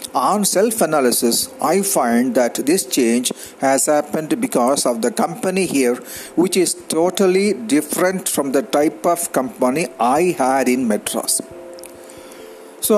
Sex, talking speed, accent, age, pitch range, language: male, 135 wpm, native, 50-69, 155-200 Hz, Tamil